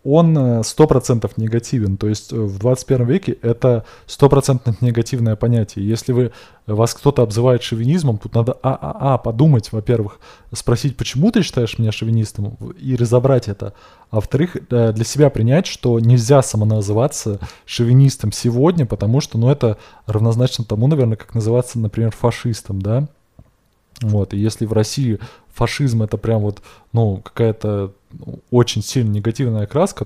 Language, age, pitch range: Russian, 20-39, 110-135 Hz